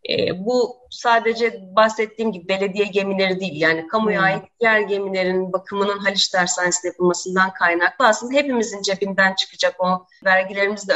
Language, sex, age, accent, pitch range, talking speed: Turkish, female, 30-49, native, 185-230 Hz, 125 wpm